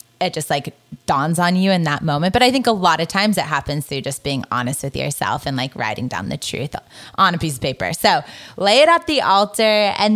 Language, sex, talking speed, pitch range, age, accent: English, female, 250 wpm, 165-215 Hz, 20-39, American